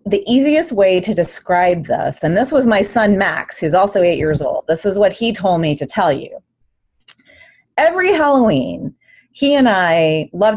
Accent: American